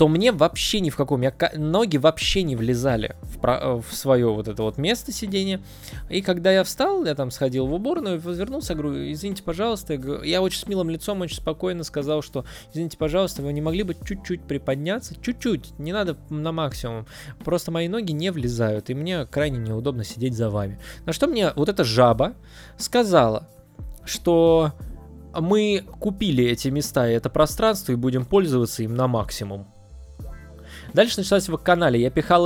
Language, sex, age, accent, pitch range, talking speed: Russian, male, 20-39, native, 130-185 Hz, 170 wpm